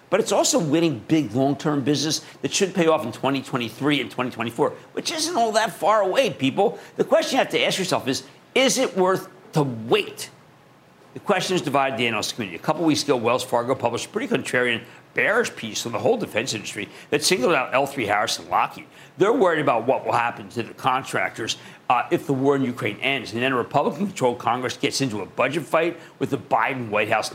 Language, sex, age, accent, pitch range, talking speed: English, male, 50-69, American, 125-185 Hz, 215 wpm